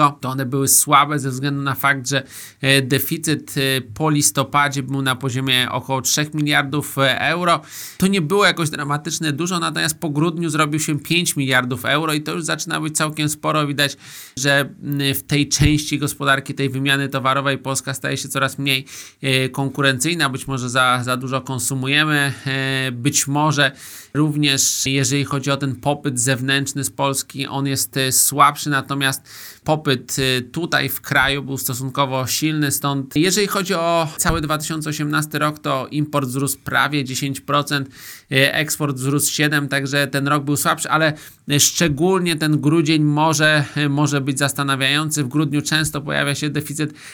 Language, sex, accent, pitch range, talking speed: Polish, male, native, 130-145 Hz, 150 wpm